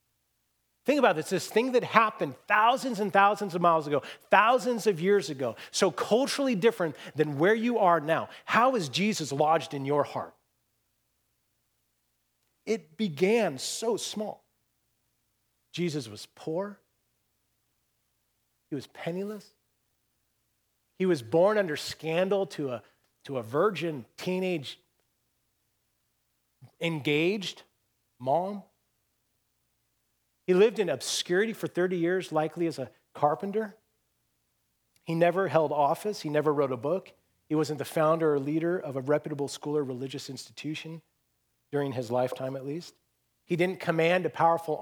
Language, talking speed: English, 130 wpm